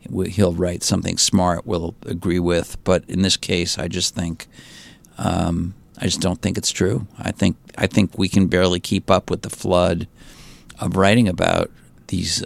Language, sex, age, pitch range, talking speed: English, male, 50-69, 85-100 Hz, 185 wpm